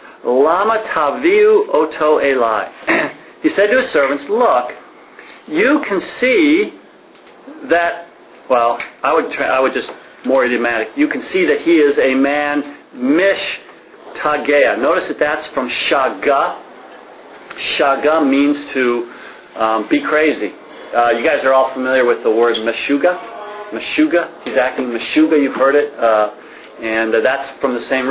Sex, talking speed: male, 145 wpm